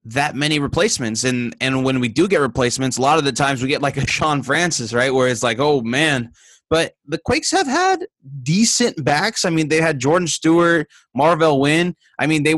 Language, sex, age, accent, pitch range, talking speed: English, male, 20-39, American, 140-175 Hz, 215 wpm